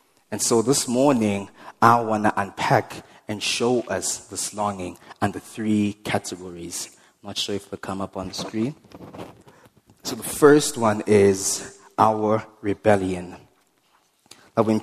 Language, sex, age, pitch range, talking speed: English, male, 20-39, 100-120 Hz, 140 wpm